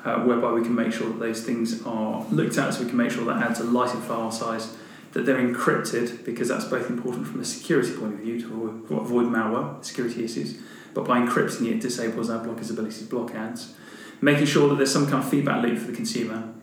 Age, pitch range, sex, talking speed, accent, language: 30-49, 115-130 Hz, male, 245 wpm, British, English